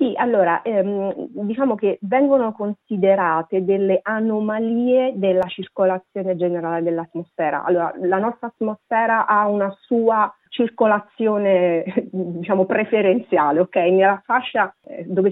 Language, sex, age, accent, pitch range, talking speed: Italian, female, 40-59, native, 175-225 Hz, 100 wpm